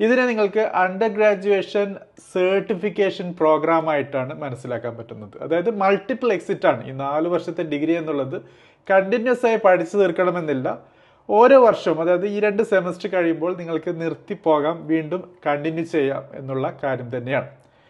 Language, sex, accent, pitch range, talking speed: Malayalam, male, native, 150-200 Hz, 115 wpm